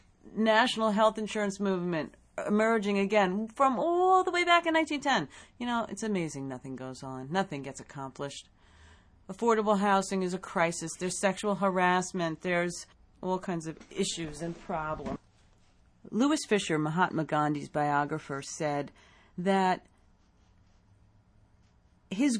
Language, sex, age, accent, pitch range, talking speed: English, female, 40-59, American, 140-225 Hz, 125 wpm